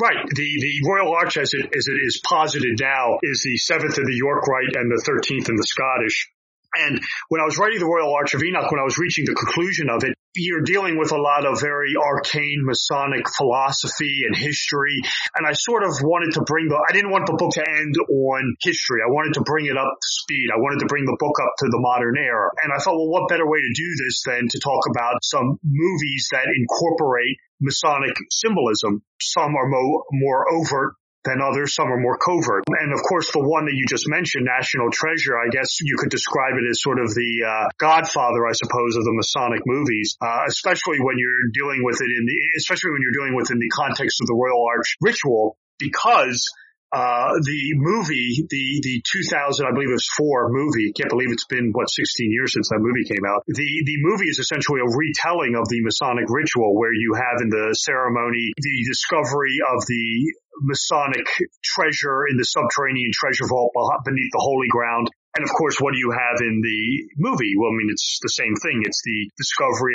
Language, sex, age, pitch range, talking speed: English, male, 30-49, 120-155 Hz, 215 wpm